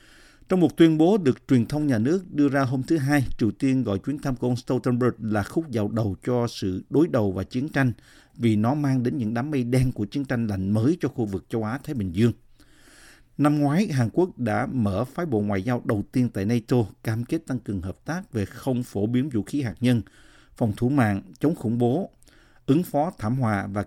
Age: 50-69